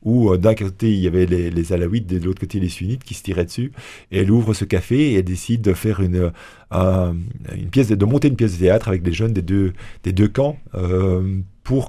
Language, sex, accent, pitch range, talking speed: French, male, French, 95-115 Hz, 250 wpm